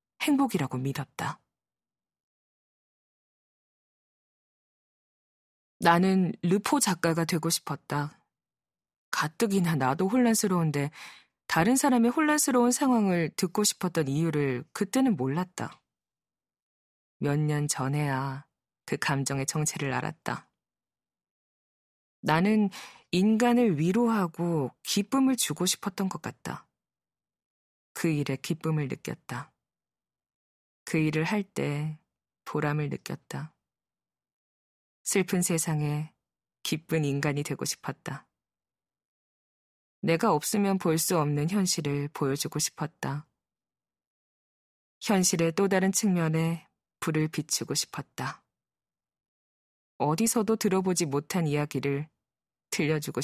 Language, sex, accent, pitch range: Korean, female, native, 145-190 Hz